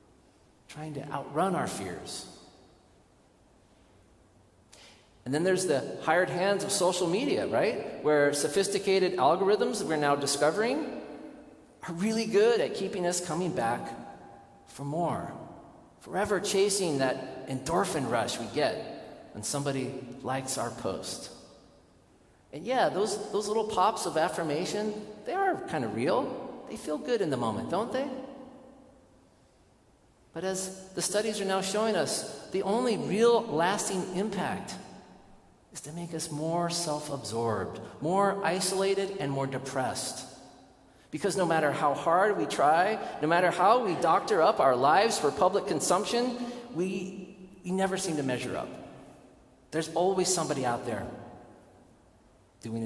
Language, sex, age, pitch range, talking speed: English, male, 40-59, 135-200 Hz, 135 wpm